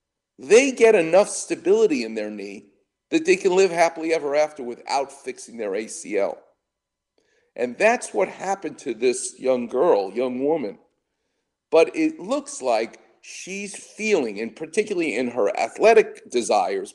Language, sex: English, male